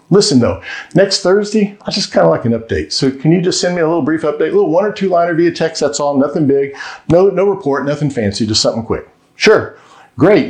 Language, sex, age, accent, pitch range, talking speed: English, male, 50-69, American, 125-165 Hz, 240 wpm